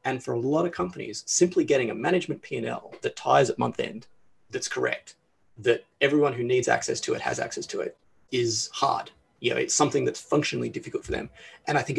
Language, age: English, 30-49